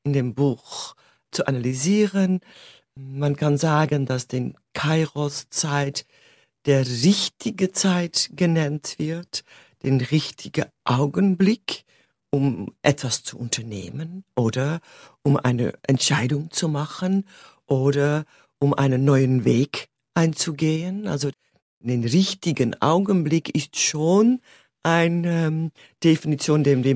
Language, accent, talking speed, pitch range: German, German, 100 wpm, 140-185 Hz